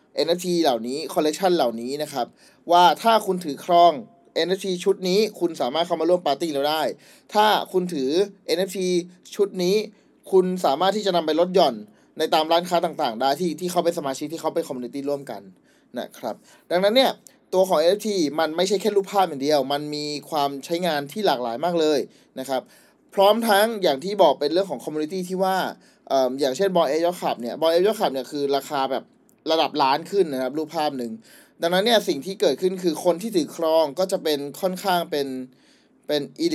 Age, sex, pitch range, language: 20-39, male, 145-190 Hz, Thai